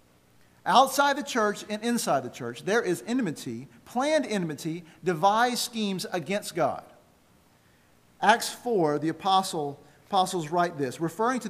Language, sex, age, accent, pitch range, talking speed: English, male, 50-69, American, 135-200 Hz, 130 wpm